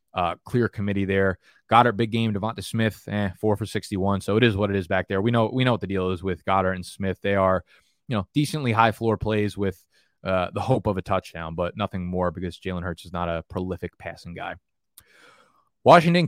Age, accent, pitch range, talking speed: 20-39, American, 95-115 Hz, 230 wpm